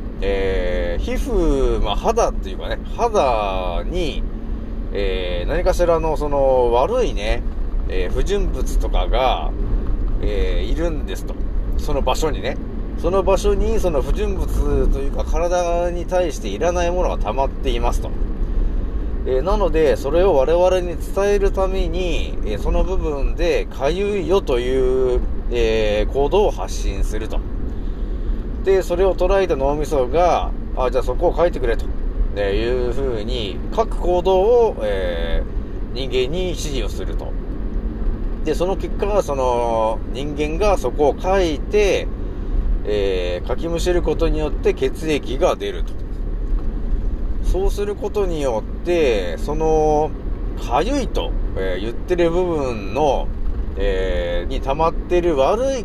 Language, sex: Japanese, male